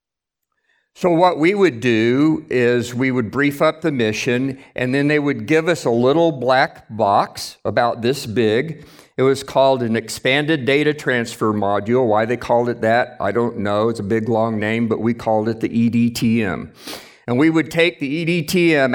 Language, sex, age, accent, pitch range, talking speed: English, male, 50-69, American, 120-160 Hz, 185 wpm